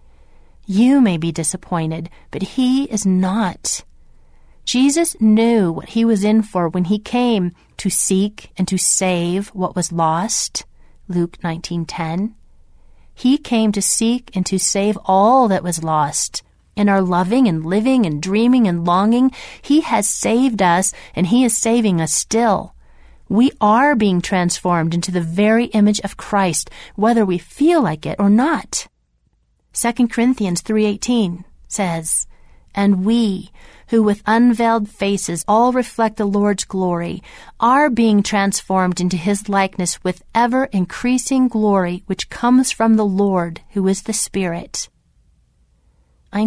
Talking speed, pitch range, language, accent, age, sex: 140 wpm, 180-230 Hz, English, American, 40-59, female